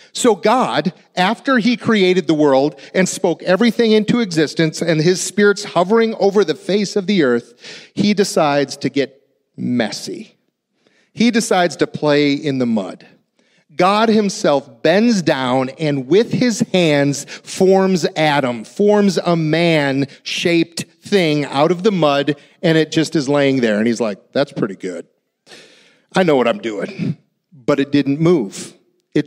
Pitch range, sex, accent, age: 140-195 Hz, male, American, 40-59